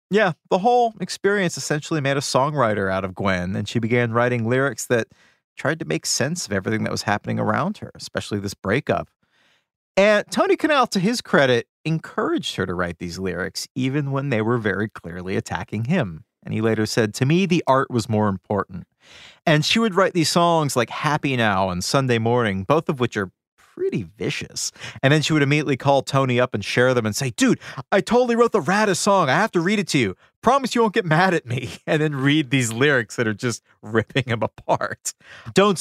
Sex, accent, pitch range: male, American, 110-165 Hz